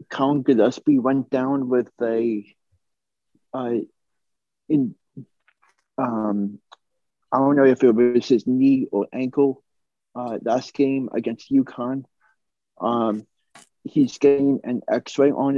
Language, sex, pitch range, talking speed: English, male, 115-135 Hz, 115 wpm